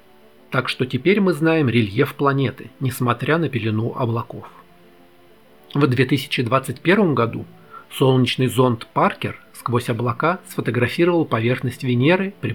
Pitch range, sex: 110-140 Hz, male